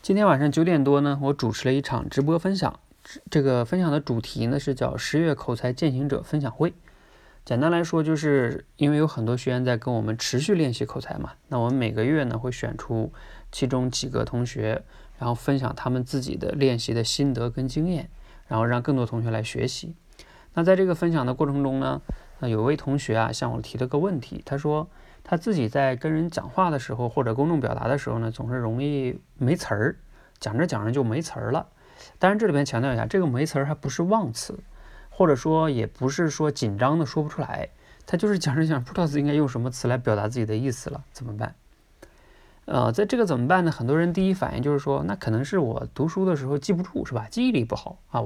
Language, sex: Chinese, male